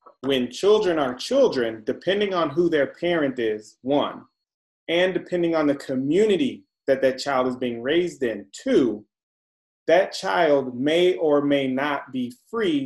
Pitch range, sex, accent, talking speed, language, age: 130-175 Hz, male, American, 150 wpm, English, 30-49